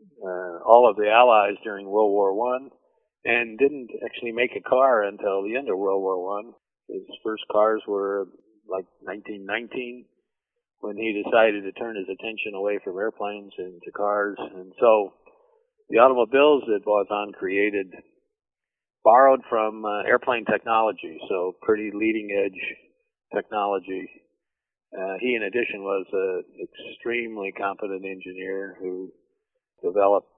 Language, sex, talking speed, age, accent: English, male, 130 wpm, 50-69, American